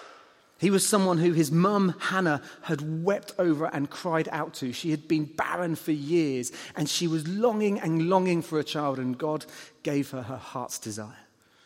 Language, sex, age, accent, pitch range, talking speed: English, male, 30-49, British, 135-170 Hz, 185 wpm